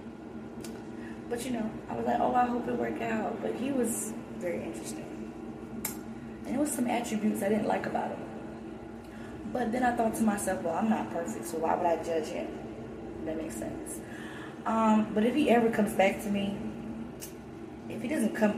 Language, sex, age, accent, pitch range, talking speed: English, female, 20-39, American, 190-245 Hz, 190 wpm